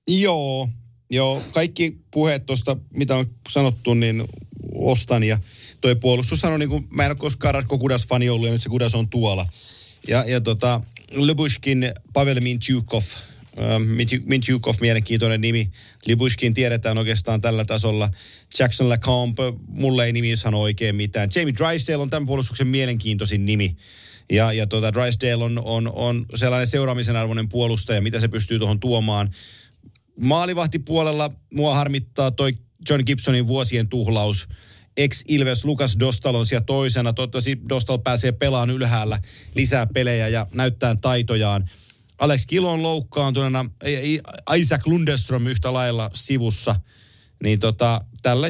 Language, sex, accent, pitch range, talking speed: Finnish, male, native, 110-135 Hz, 135 wpm